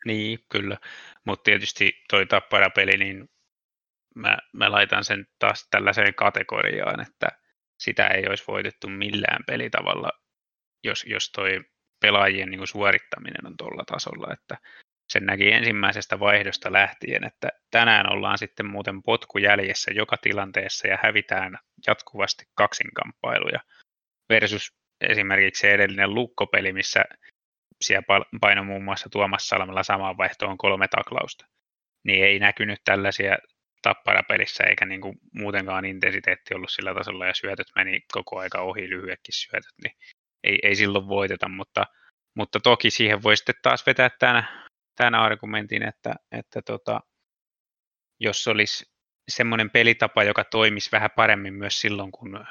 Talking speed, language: 135 wpm, Finnish